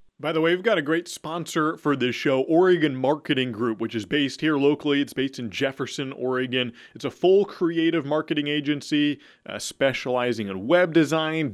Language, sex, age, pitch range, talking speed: English, male, 30-49, 120-150 Hz, 180 wpm